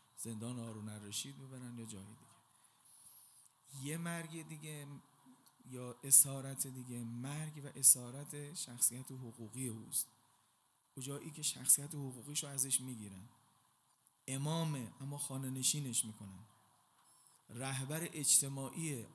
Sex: male